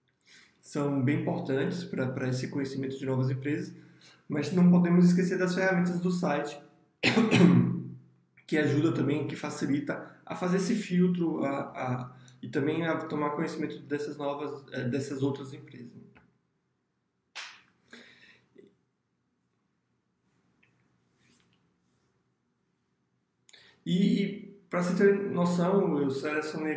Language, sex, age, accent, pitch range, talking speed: Portuguese, male, 20-39, Brazilian, 140-180 Hz, 95 wpm